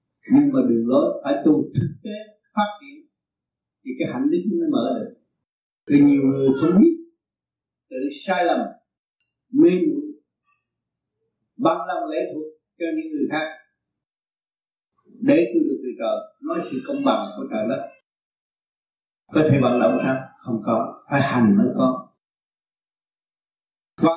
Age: 50-69